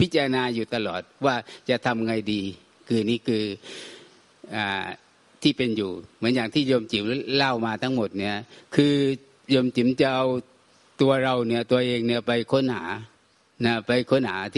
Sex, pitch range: male, 115-135 Hz